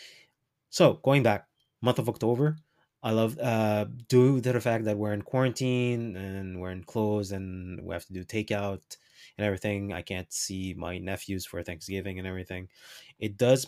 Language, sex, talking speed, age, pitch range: English, male, 175 wpm, 20-39, 100-120 Hz